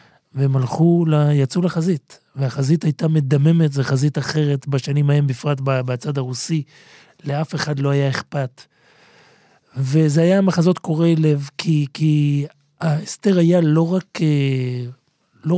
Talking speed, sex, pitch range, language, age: 125 wpm, male, 130-155 Hz, Hebrew, 30-49